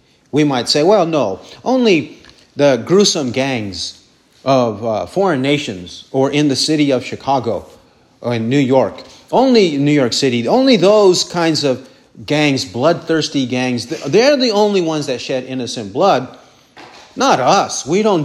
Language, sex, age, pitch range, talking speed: English, male, 40-59, 135-190 Hz, 150 wpm